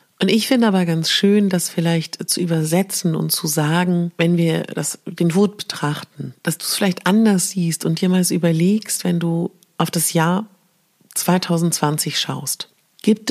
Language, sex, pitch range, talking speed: German, female, 165-205 Hz, 165 wpm